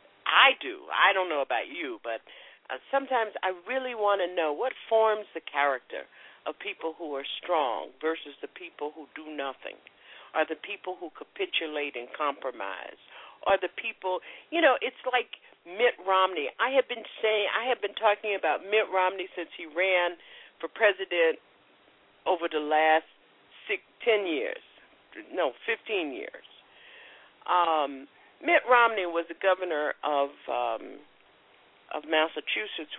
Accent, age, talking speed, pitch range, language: American, 50-69, 145 wpm, 150-225 Hz, English